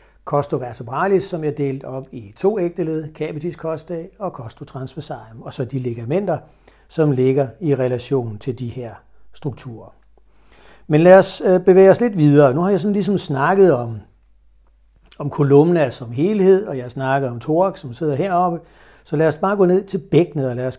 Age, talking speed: 60-79, 175 wpm